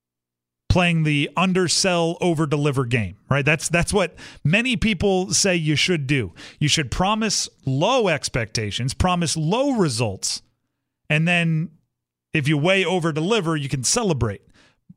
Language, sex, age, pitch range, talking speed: English, male, 40-59, 115-180 Hz, 135 wpm